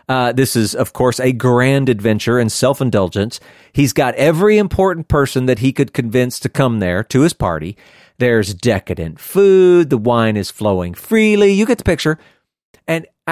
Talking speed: 170 wpm